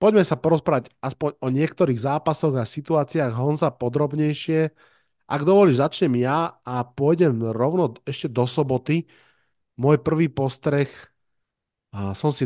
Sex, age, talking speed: male, 30-49, 125 wpm